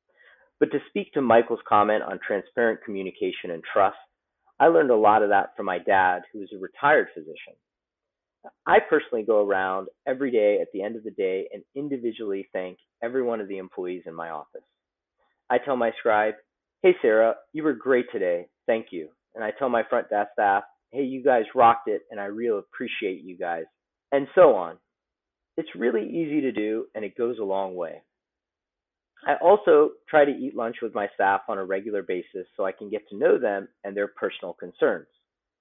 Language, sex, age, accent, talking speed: English, male, 30-49, American, 195 wpm